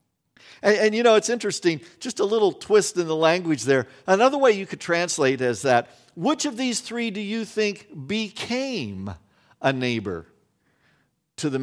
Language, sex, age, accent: English, male, 50-69, American